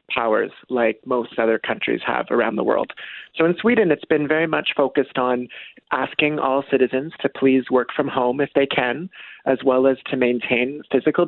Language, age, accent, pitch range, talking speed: English, 30-49, American, 125-150 Hz, 185 wpm